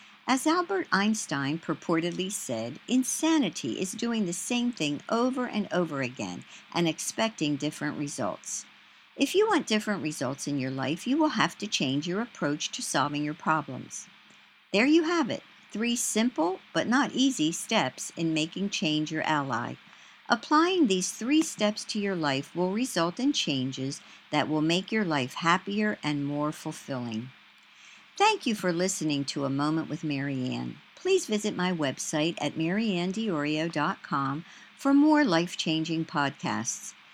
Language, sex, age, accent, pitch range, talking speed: English, male, 60-79, American, 150-235 Hz, 150 wpm